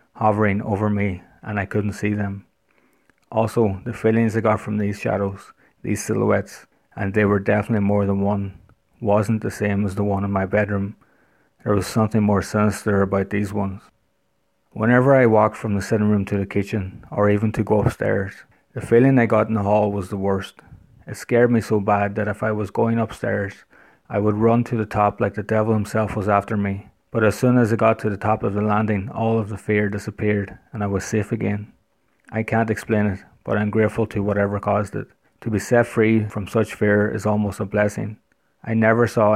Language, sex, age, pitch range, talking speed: English, male, 30-49, 100-110 Hz, 210 wpm